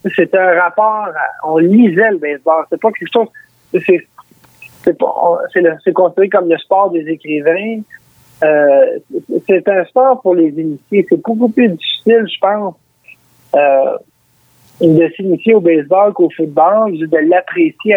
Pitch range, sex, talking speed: 155-215 Hz, male, 155 wpm